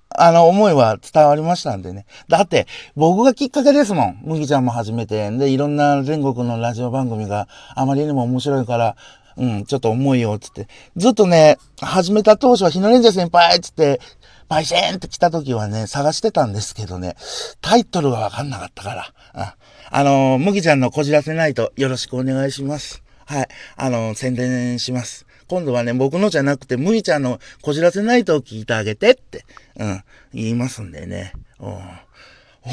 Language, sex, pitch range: Japanese, male, 115-180 Hz